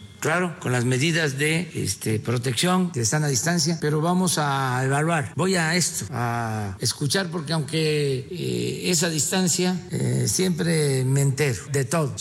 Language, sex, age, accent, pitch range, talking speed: Spanish, male, 50-69, Mexican, 120-160 Hz, 155 wpm